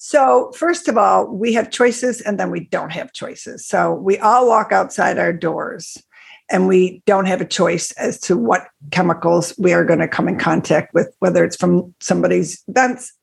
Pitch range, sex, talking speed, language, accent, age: 190-220 Hz, female, 195 wpm, English, American, 50-69